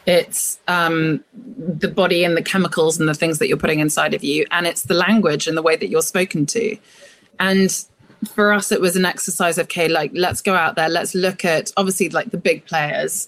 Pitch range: 165-195 Hz